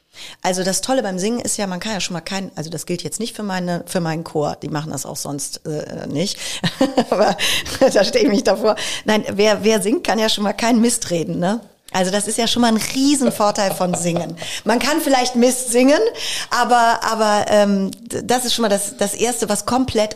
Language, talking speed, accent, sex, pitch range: German, 225 wpm, German, female, 175-215 Hz